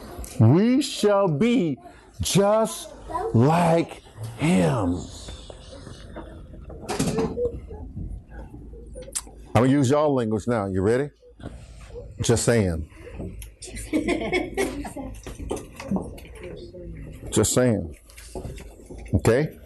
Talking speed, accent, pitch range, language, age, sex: 60 wpm, American, 85-125 Hz, English, 50-69, male